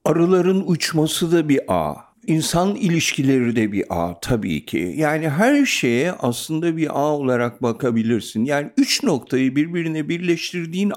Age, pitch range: 60-79, 120-170 Hz